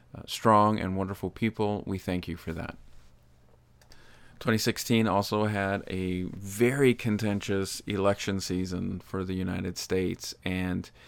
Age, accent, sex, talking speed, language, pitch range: 40-59, American, male, 125 wpm, English, 95-110 Hz